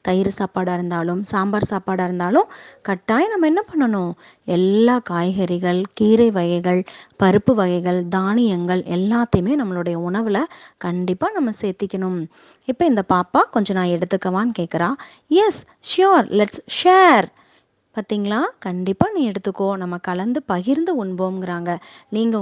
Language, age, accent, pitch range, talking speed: Tamil, 20-39, native, 185-270 Hz, 105 wpm